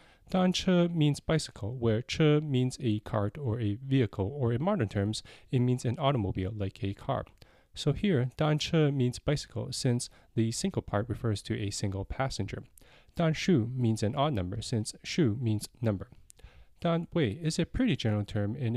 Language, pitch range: English, 105-135 Hz